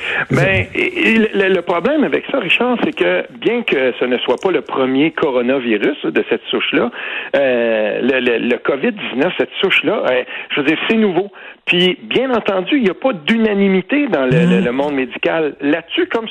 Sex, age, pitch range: male, 60-79, 150-230 Hz